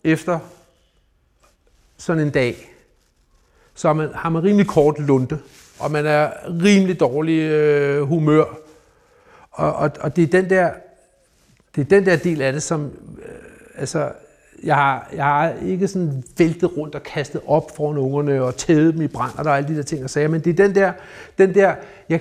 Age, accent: 60-79, native